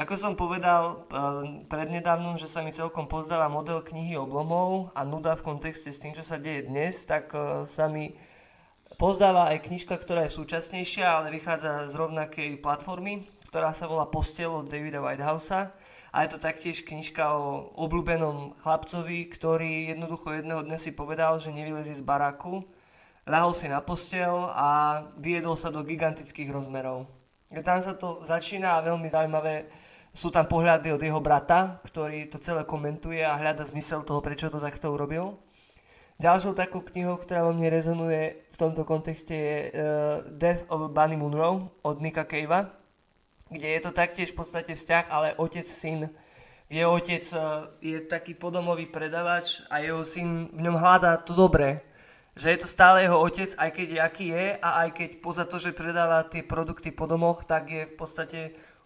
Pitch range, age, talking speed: 155-170 Hz, 20-39, 170 wpm